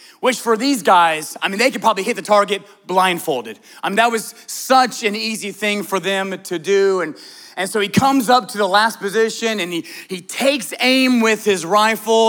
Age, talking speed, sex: 30-49, 210 wpm, male